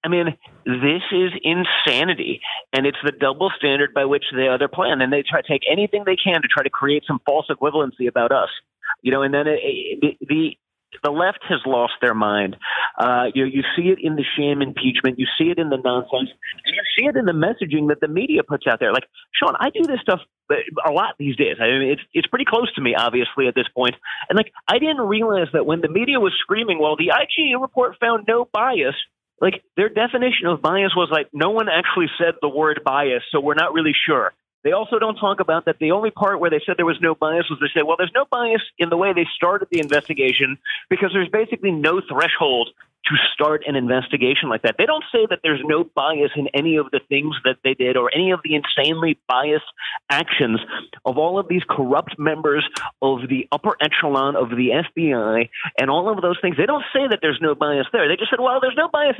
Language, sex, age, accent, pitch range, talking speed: English, male, 30-49, American, 145-225 Hz, 230 wpm